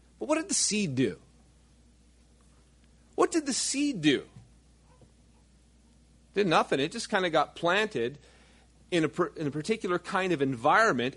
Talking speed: 145 wpm